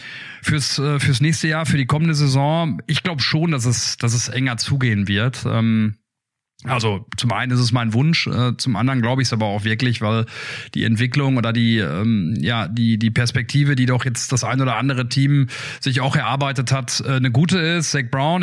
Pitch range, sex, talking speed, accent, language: 125-150 Hz, male, 205 wpm, German, German